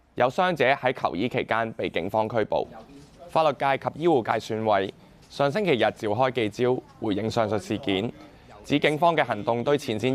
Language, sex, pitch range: Chinese, male, 110-145 Hz